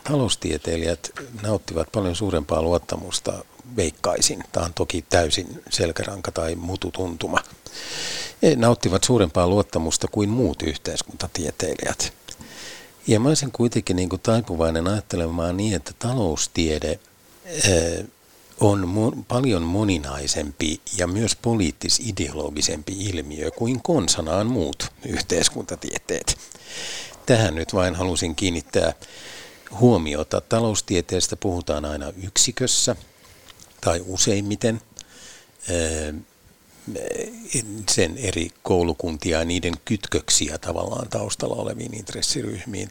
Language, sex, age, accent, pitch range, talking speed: Finnish, male, 60-79, native, 85-110 Hz, 85 wpm